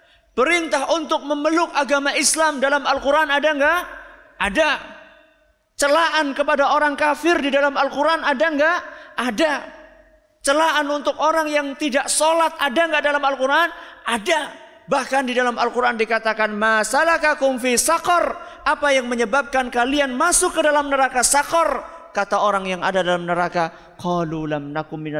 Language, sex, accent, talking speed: Indonesian, male, native, 130 wpm